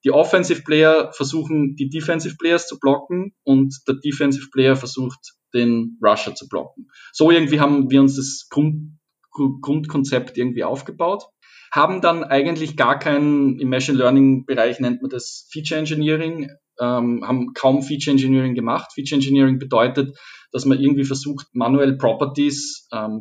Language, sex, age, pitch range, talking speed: German, male, 10-29, 125-145 Hz, 130 wpm